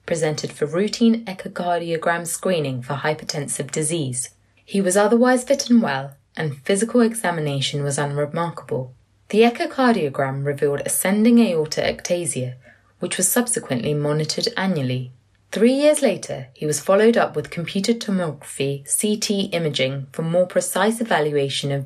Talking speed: 130 wpm